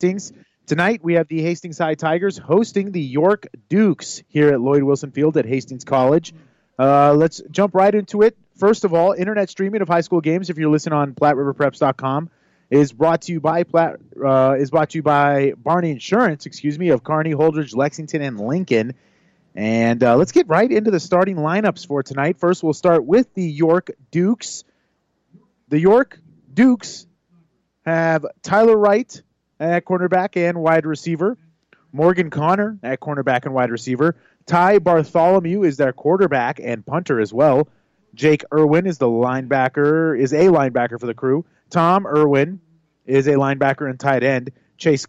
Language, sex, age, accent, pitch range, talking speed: English, male, 30-49, American, 140-175 Hz, 170 wpm